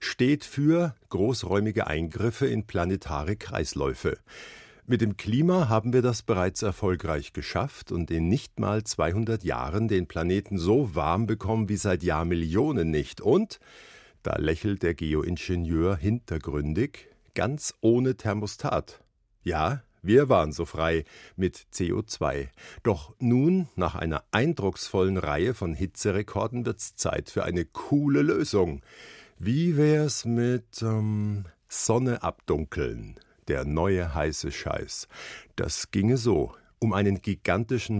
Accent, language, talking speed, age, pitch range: German, German, 120 wpm, 50-69, 85-120 Hz